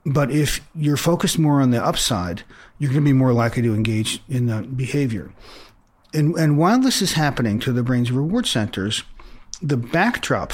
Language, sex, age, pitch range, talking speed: English, male, 40-59, 120-150 Hz, 180 wpm